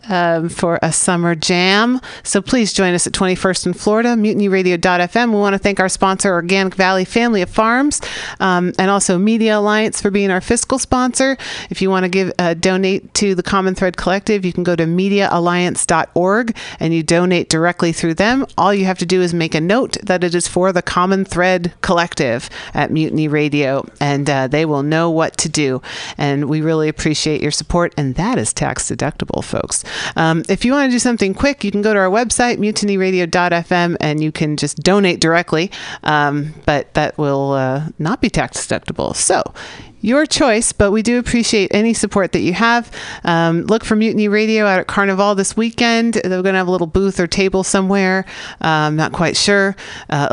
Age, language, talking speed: 40-59, English, 195 wpm